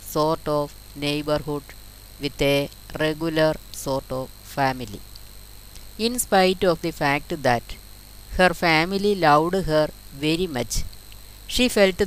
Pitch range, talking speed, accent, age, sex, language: 110-160 Hz, 115 wpm, native, 20-39, female, Malayalam